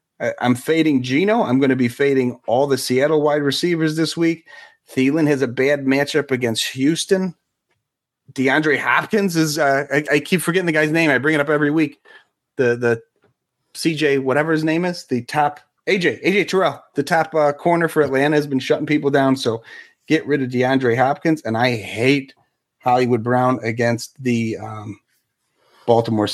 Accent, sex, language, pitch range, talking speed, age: American, male, English, 130-160 Hz, 175 wpm, 30-49